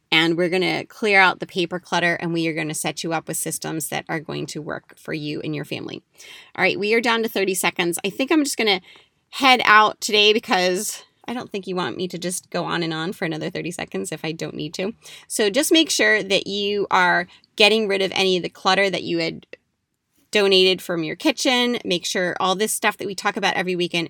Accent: American